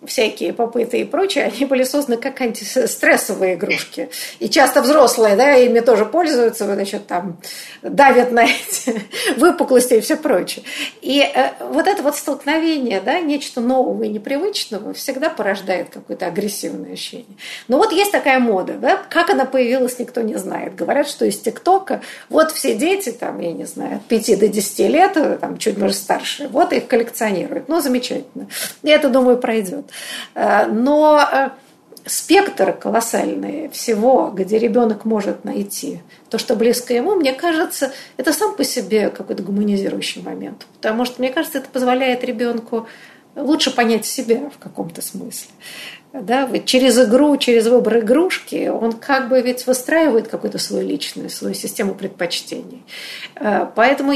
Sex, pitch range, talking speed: female, 230-290 Hz, 150 wpm